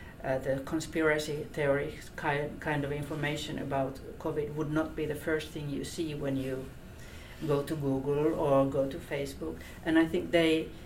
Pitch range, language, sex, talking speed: 140-160 Hz, English, female, 165 wpm